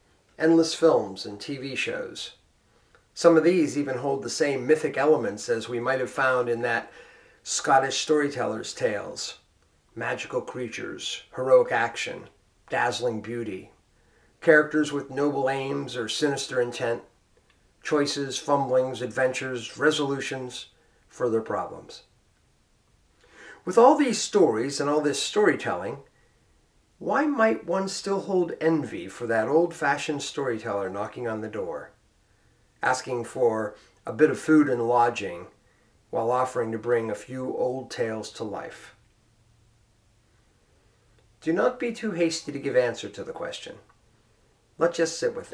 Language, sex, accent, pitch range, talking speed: English, male, American, 115-160 Hz, 130 wpm